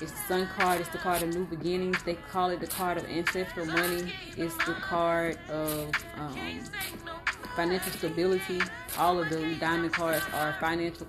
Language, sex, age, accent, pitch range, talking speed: English, female, 30-49, American, 155-175 Hz, 175 wpm